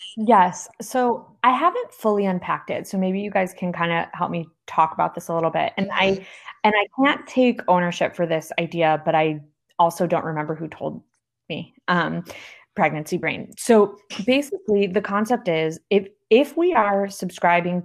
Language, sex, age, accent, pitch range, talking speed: English, female, 20-39, American, 165-200 Hz, 180 wpm